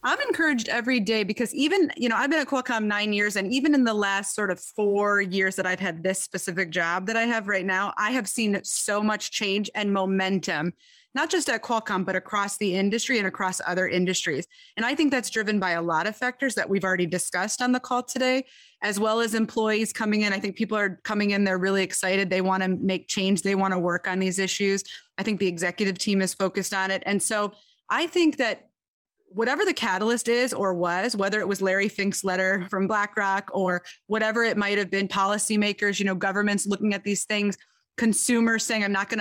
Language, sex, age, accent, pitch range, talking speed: English, female, 30-49, American, 190-225 Hz, 225 wpm